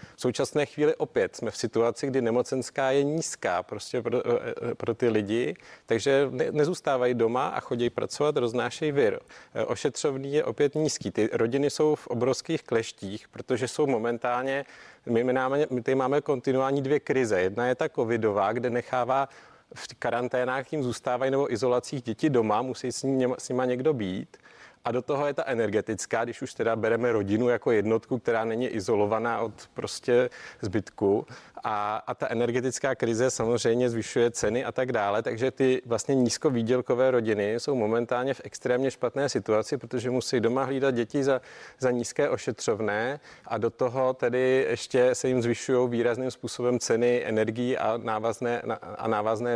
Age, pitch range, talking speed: 40-59, 120-135 Hz, 160 wpm